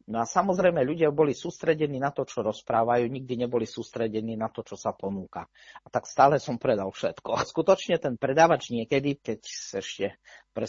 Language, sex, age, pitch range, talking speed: Slovak, male, 40-59, 105-130 Hz, 185 wpm